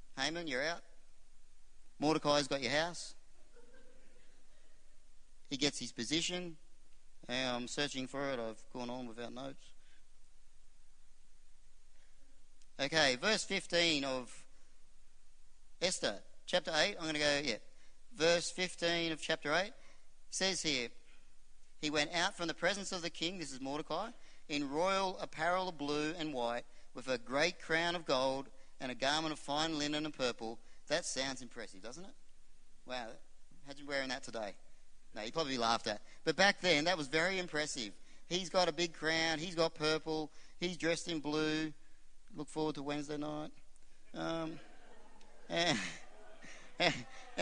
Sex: male